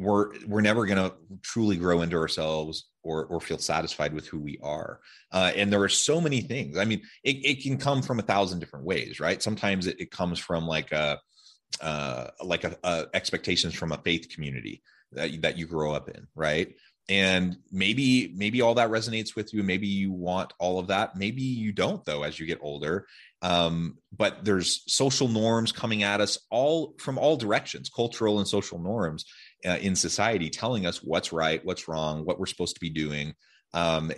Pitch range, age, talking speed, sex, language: 85-110 Hz, 30-49, 200 wpm, male, English